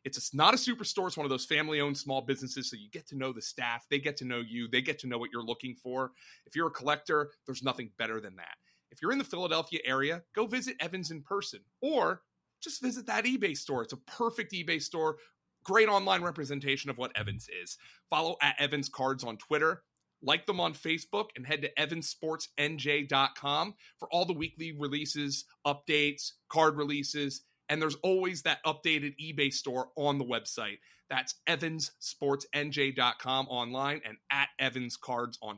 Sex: male